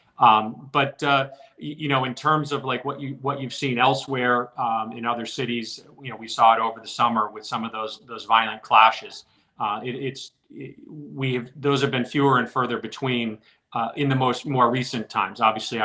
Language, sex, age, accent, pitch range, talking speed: English, male, 30-49, American, 110-125 Hz, 210 wpm